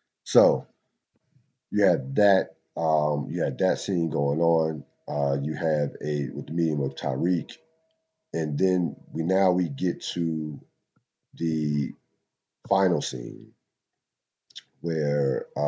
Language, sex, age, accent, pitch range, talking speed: English, male, 40-59, American, 75-95 Hz, 120 wpm